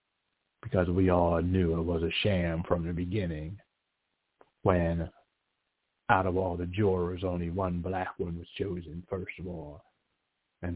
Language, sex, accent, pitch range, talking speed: English, male, American, 85-100 Hz, 150 wpm